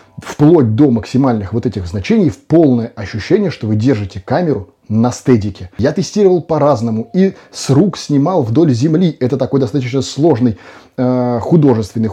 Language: Russian